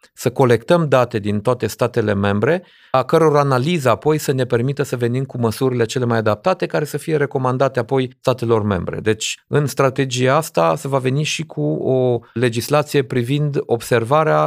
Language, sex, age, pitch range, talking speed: Romanian, male, 40-59, 115-145 Hz, 170 wpm